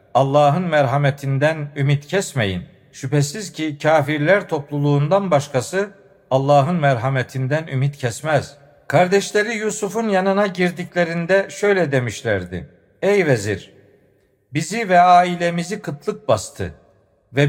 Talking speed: 95 wpm